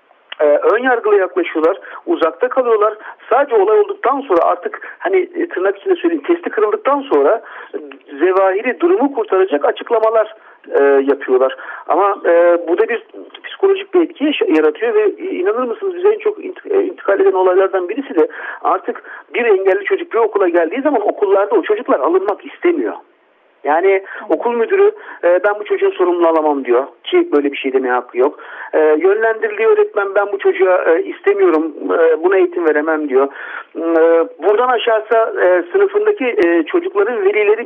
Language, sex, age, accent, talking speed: Turkish, male, 50-69, native, 135 wpm